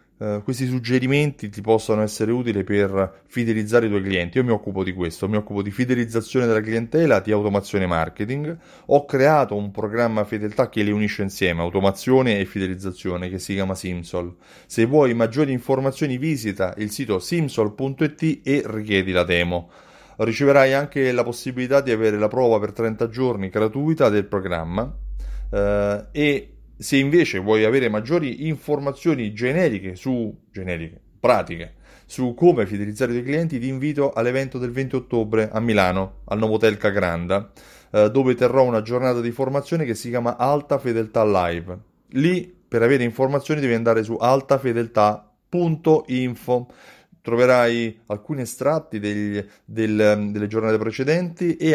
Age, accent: 30-49, native